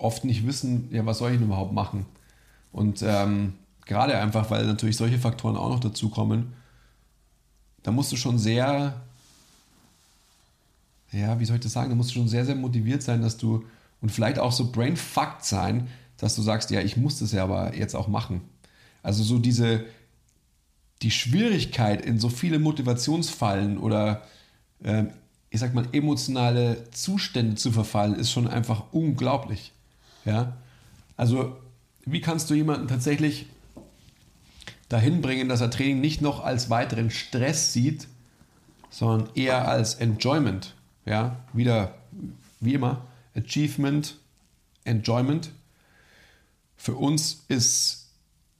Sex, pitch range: male, 110-130 Hz